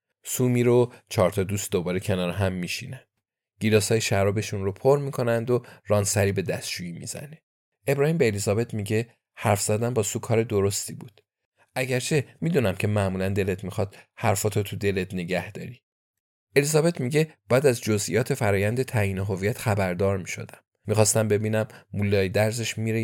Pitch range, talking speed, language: 95-120 Hz, 145 wpm, Persian